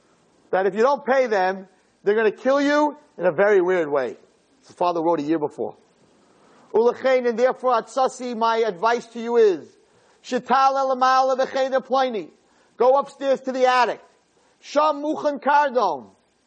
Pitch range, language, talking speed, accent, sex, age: 205-280 Hz, English, 155 wpm, American, male, 40-59